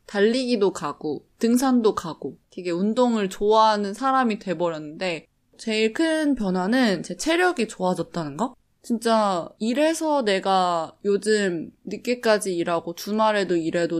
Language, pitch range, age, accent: Korean, 180-255 Hz, 20-39, native